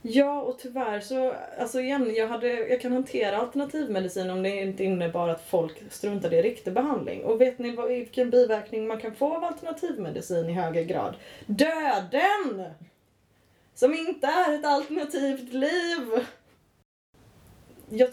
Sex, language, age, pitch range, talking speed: female, Swedish, 20-39, 185-260 Hz, 140 wpm